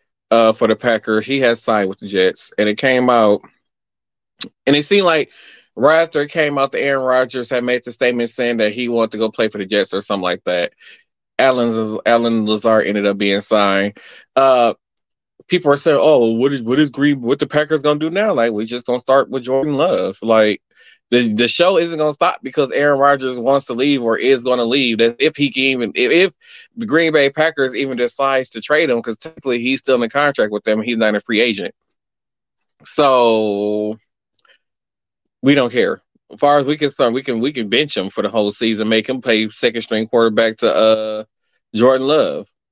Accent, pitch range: American, 110-140 Hz